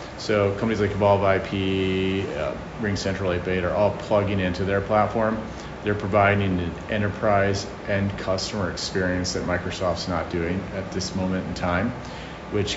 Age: 40-59